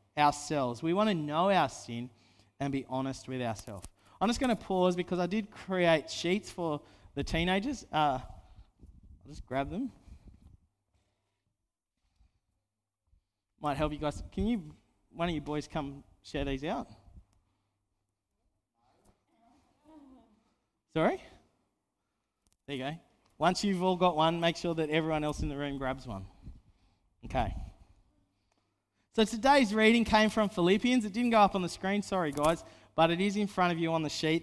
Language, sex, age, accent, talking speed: English, male, 20-39, Australian, 155 wpm